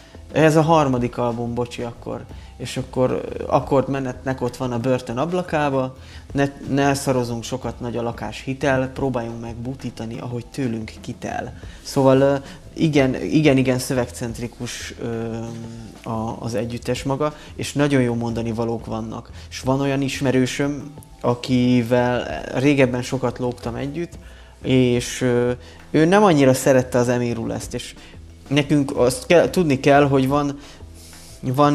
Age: 20-39